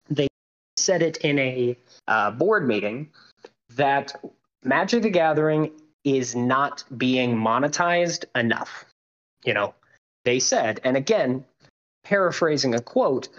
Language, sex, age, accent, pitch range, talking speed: English, male, 20-39, American, 125-170 Hz, 110 wpm